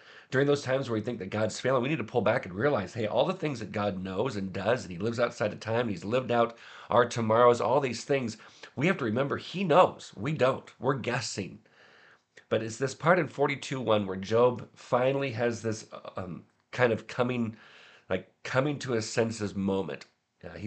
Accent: American